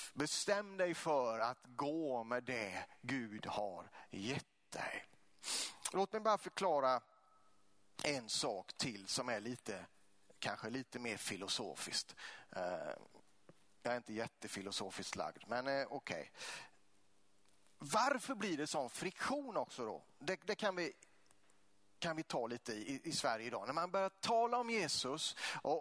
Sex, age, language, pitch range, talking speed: male, 30-49, Swedish, 130-210 Hz, 135 wpm